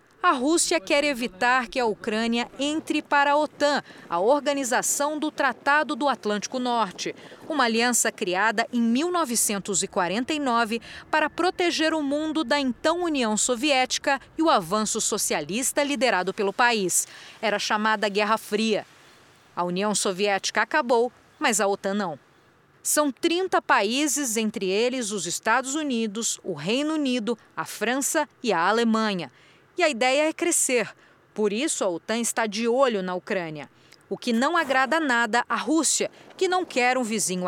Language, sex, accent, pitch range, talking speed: Portuguese, female, Brazilian, 215-290 Hz, 145 wpm